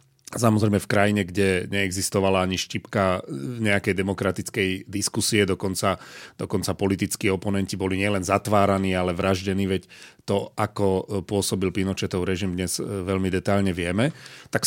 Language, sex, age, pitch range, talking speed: Slovak, male, 40-59, 95-110 Hz, 125 wpm